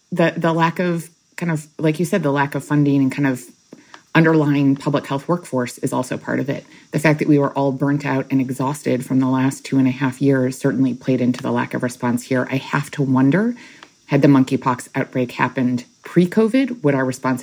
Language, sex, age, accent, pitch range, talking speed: English, female, 30-49, American, 130-155 Hz, 220 wpm